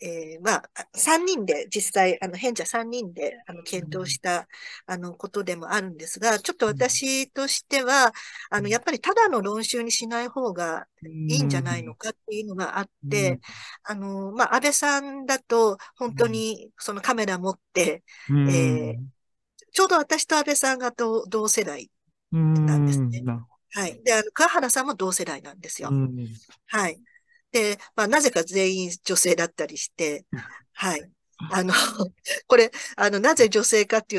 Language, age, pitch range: Japanese, 50-69, 165-245 Hz